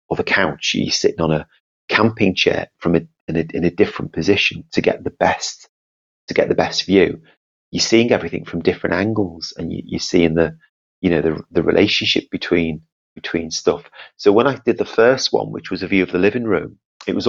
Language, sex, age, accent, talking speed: English, male, 40-59, British, 215 wpm